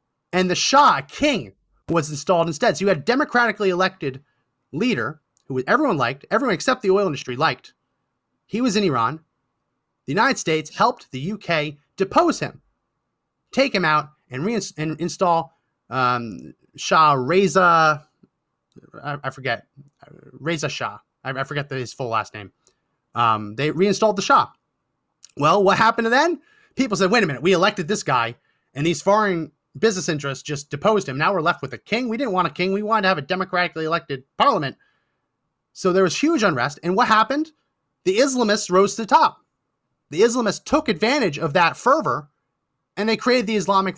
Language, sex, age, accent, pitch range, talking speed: English, male, 30-49, American, 140-205 Hz, 175 wpm